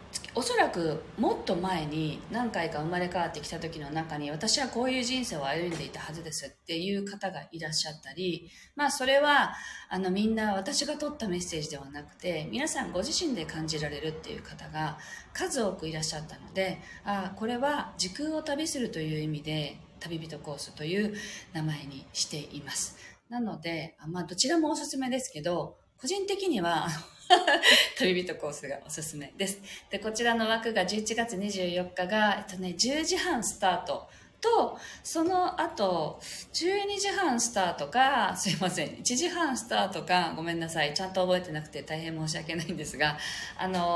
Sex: female